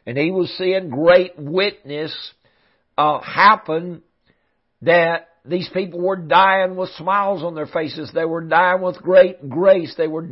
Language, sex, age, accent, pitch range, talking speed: English, male, 60-79, American, 165-190 Hz, 150 wpm